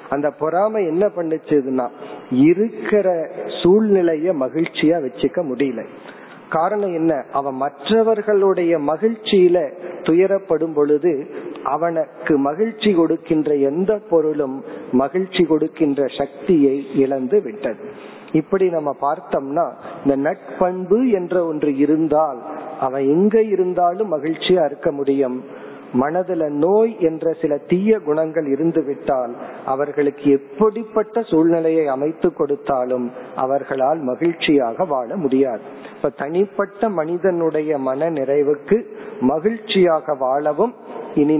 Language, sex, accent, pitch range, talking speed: Tamil, male, native, 145-195 Hz, 75 wpm